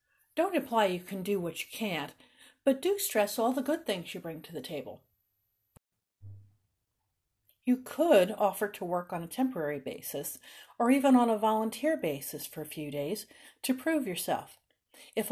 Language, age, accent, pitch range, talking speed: English, 50-69, American, 175-255 Hz, 170 wpm